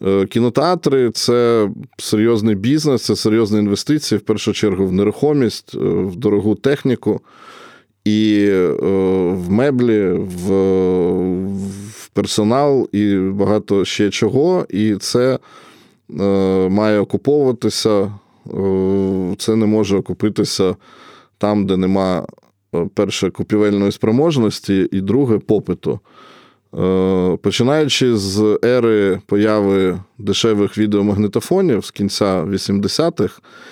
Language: Ukrainian